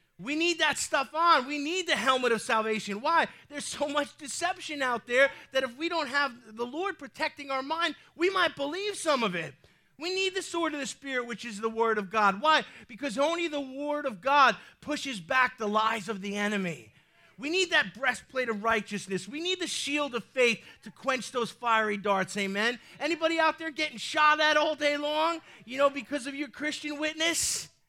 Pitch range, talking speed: 195-290 Hz, 205 wpm